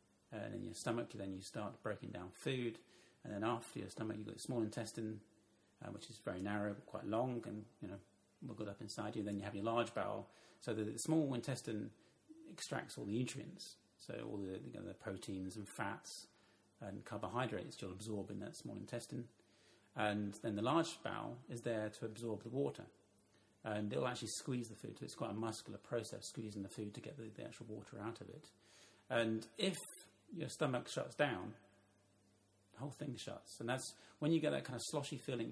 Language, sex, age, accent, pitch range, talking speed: English, male, 40-59, British, 100-115 Hz, 205 wpm